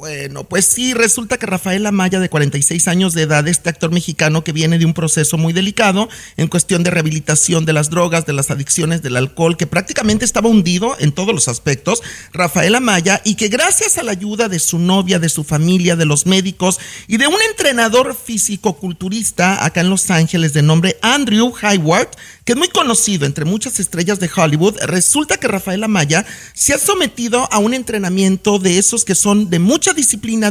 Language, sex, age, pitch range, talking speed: Spanish, male, 40-59, 170-230 Hz, 190 wpm